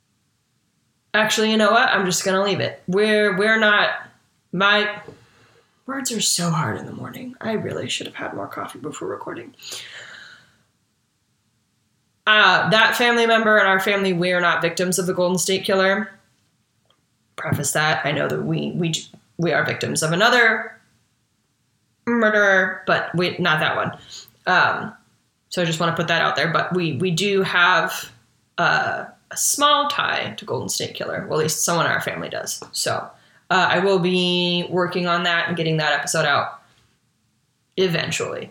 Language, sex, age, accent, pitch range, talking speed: English, female, 20-39, American, 145-195 Hz, 170 wpm